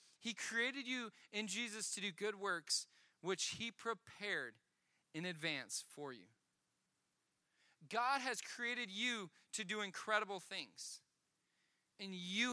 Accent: American